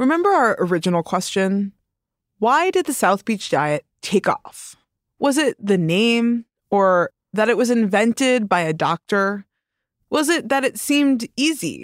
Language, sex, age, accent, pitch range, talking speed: English, female, 20-39, American, 185-275 Hz, 150 wpm